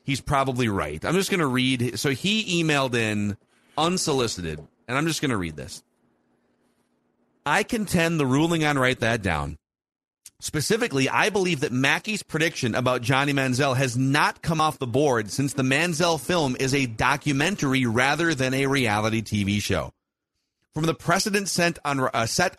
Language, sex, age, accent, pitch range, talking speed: English, male, 40-59, American, 120-165 Hz, 165 wpm